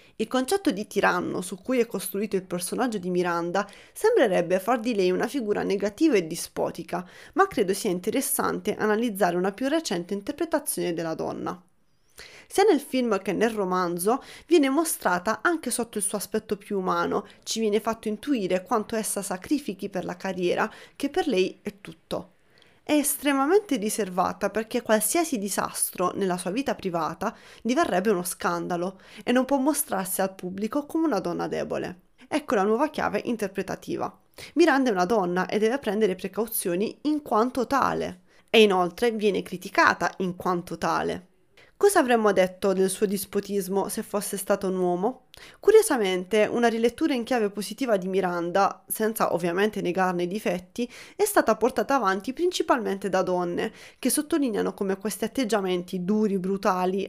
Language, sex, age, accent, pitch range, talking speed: Italian, female, 20-39, native, 190-260 Hz, 155 wpm